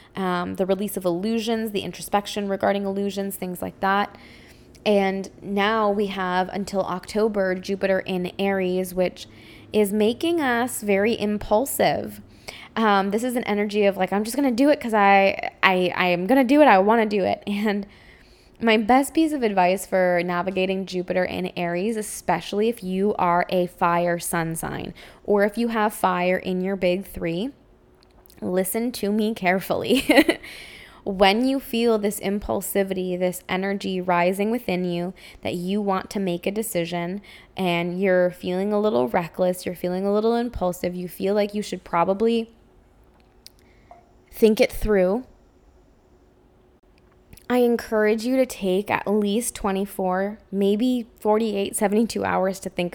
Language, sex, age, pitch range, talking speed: English, female, 10-29, 180-215 Hz, 155 wpm